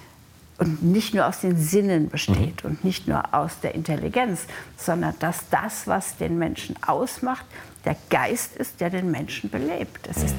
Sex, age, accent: female, 60-79, German